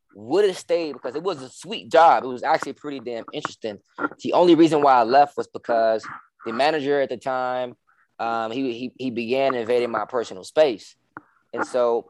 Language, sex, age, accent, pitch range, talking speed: English, male, 20-39, American, 120-150 Hz, 195 wpm